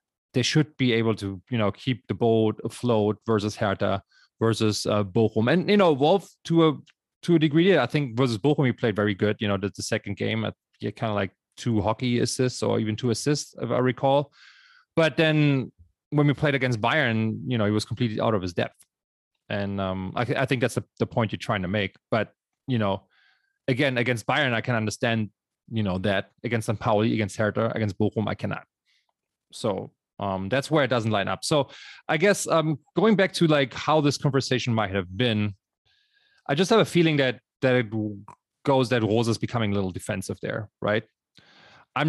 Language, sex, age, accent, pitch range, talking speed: English, male, 30-49, German, 105-150 Hz, 205 wpm